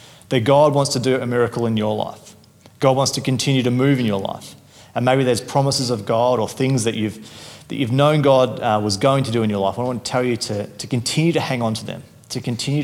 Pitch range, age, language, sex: 110-135 Hz, 30-49, English, male